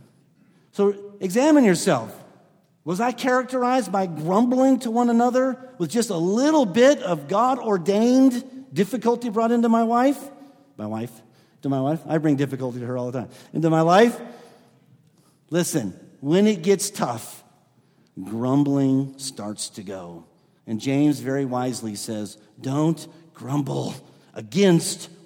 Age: 50-69